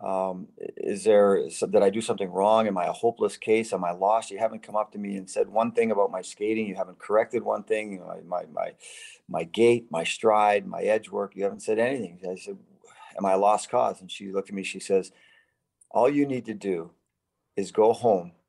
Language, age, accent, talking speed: English, 40-59, American, 235 wpm